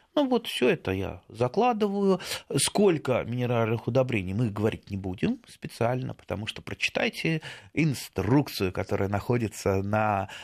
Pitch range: 95-135 Hz